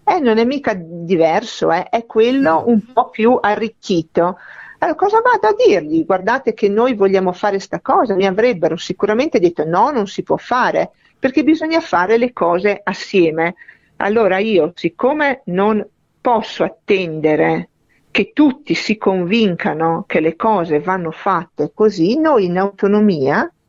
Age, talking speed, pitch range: 50-69, 145 wpm, 180-250 Hz